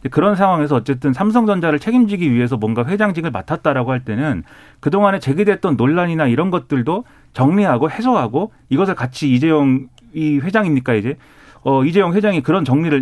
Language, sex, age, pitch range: Korean, male, 40-59, 125-170 Hz